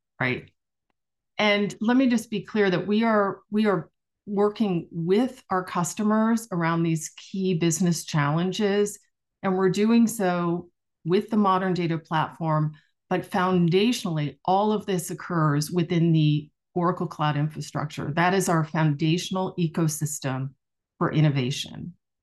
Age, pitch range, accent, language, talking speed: 40-59, 160-190 Hz, American, English, 130 wpm